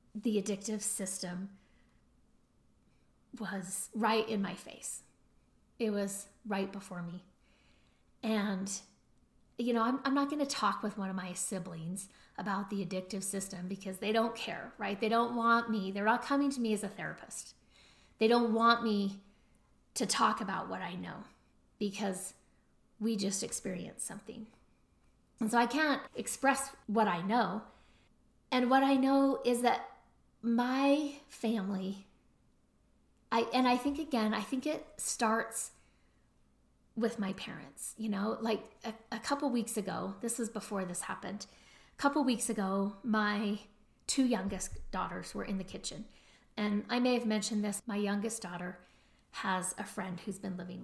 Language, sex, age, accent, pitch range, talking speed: English, female, 30-49, American, 195-235 Hz, 155 wpm